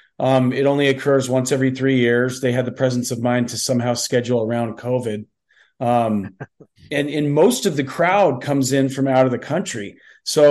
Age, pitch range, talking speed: 40-59, 125-140 Hz, 195 wpm